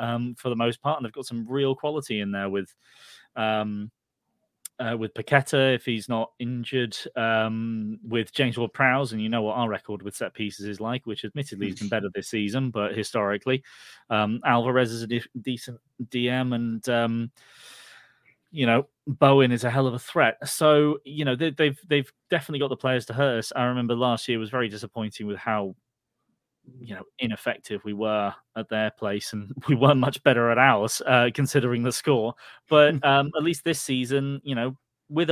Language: English